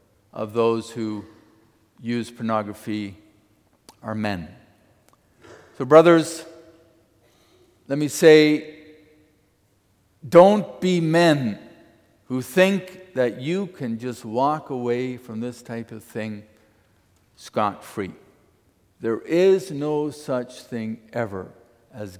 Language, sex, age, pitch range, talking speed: English, male, 50-69, 105-135 Hz, 95 wpm